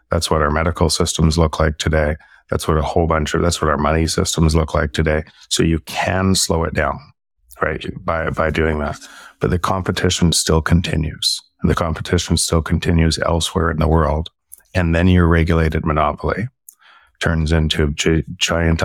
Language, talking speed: English, 180 wpm